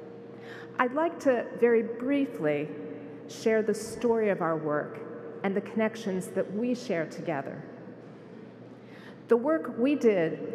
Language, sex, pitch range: English, female, 165-230 Hz